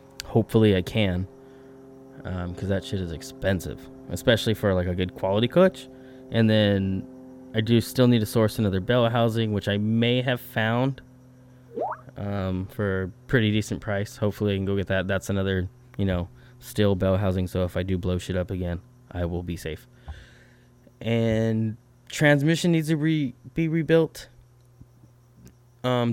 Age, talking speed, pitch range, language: 20-39, 165 wpm, 95-120 Hz, English